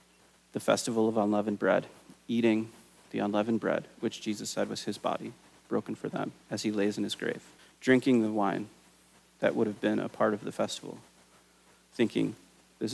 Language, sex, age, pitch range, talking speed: English, male, 30-49, 105-120 Hz, 175 wpm